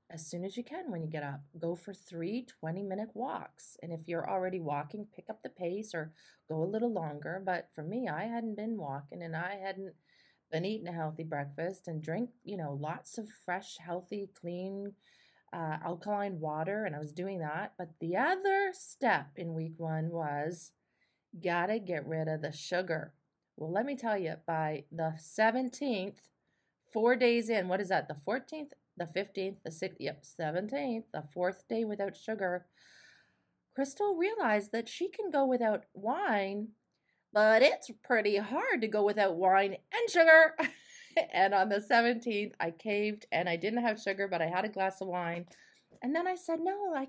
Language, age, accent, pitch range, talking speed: English, 30-49, American, 170-235 Hz, 185 wpm